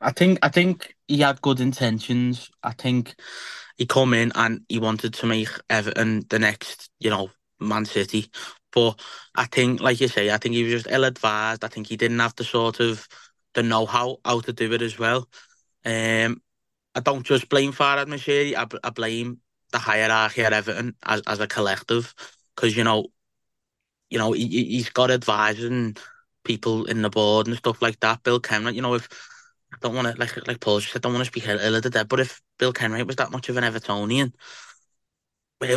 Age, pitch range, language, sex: 20-39, 115-130 Hz, English, male